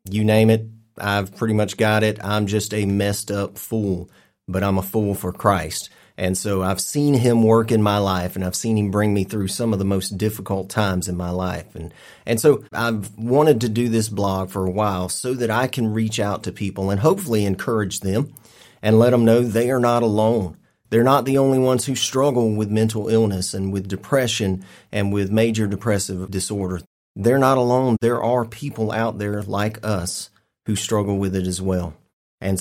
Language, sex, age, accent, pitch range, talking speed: English, male, 30-49, American, 100-120 Hz, 205 wpm